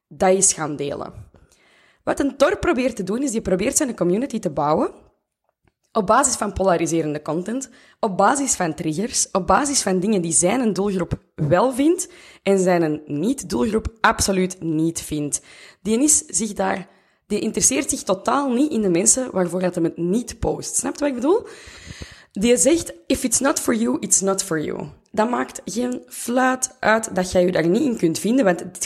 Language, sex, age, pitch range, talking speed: Dutch, female, 20-39, 175-260 Hz, 185 wpm